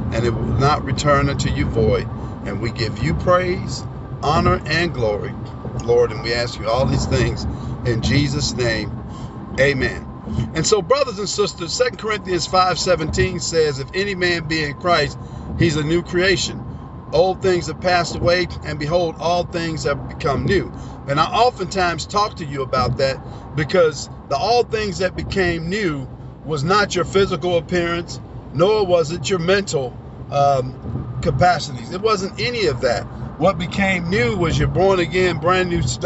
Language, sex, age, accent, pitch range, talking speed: English, male, 50-69, American, 130-180 Hz, 170 wpm